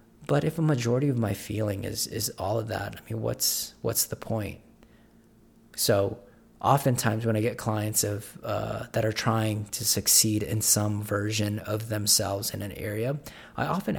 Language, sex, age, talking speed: English, male, 30-49, 175 wpm